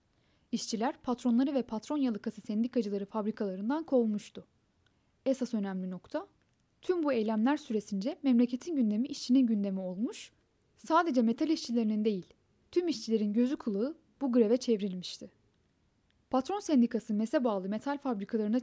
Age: 10-29